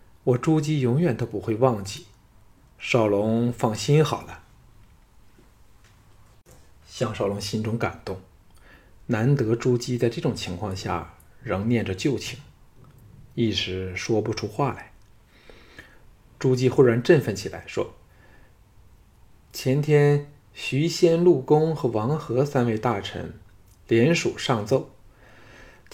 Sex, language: male, Chinese